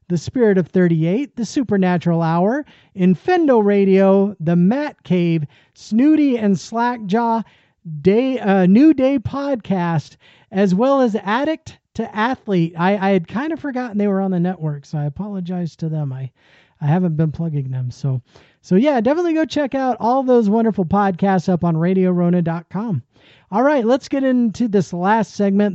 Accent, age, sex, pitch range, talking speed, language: American, 40-59, male, 175-230 Hz, 160 wpm, English